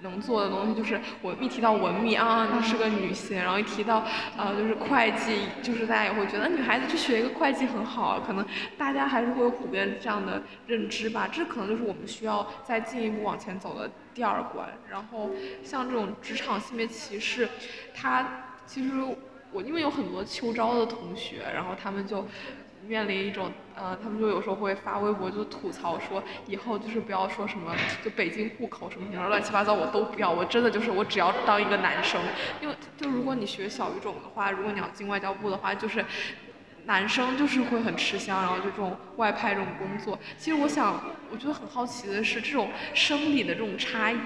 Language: Chinese